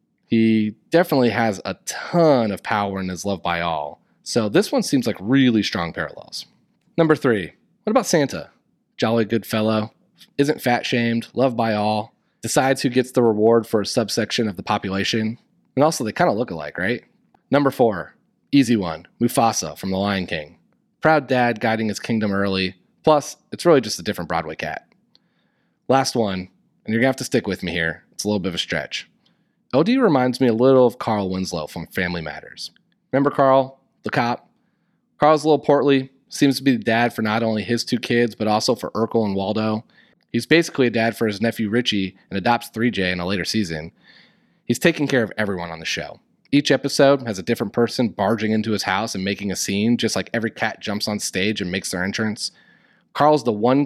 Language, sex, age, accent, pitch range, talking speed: English, male, 30-49, American, 100-130 Hz, 200 wpm